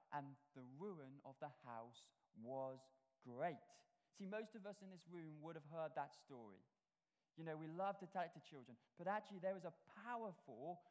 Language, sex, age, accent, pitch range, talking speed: English, male, 20-39, British, 150-195 Hz, 185 wpm